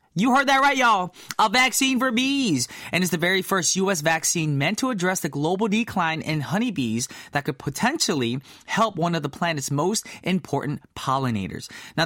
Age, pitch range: 20-39, 140-200 Hz